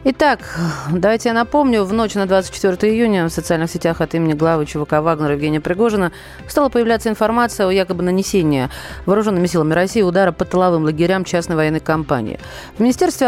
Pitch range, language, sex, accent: 165-205 Hz, Russian, female, native